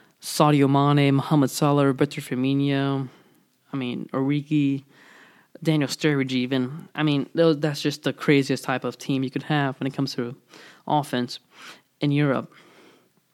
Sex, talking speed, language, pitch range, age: male, 140 wpm, English, 130-150 Hz, 20-39